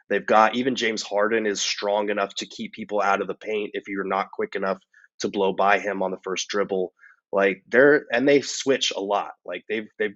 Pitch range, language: 100-115 Hz, English